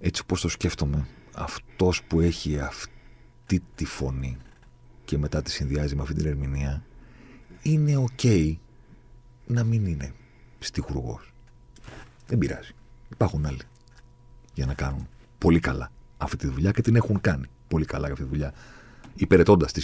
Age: 40-59